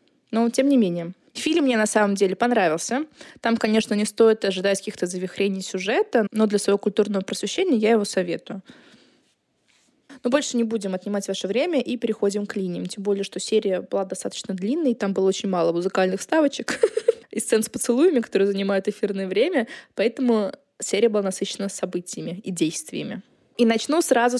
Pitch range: 190-235 Hz